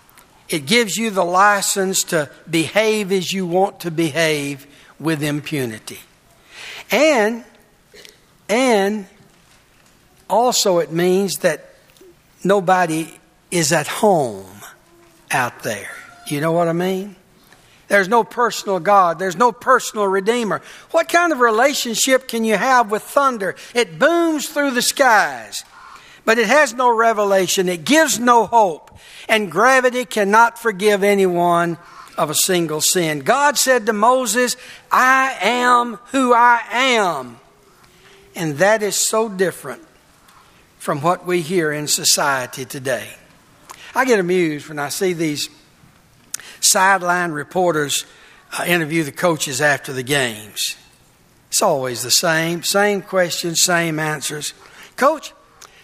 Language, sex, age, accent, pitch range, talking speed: English, male, 60-79, American, 165-235 Hz, 125 wpm